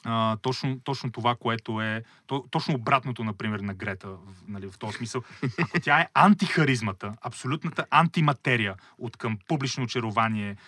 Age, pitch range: 30-49, 115-140 Hz